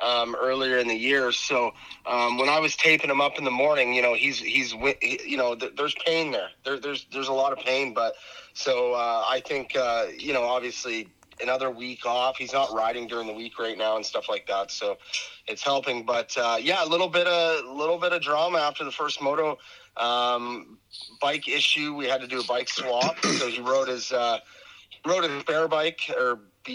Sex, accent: male, American